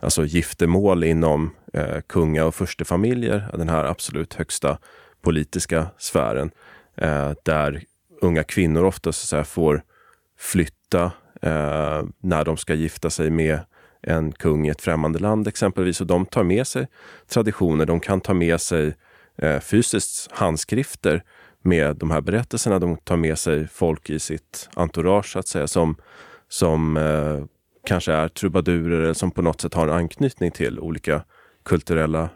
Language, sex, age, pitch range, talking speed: Swedish, male, 30-49, 80-95 Hz, 150 wpm